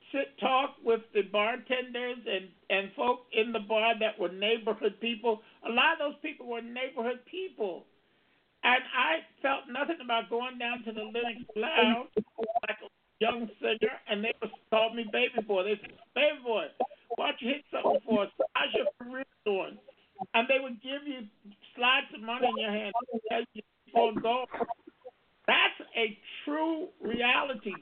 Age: 50-69